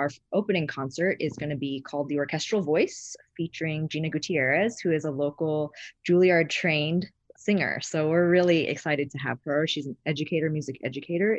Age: 20-39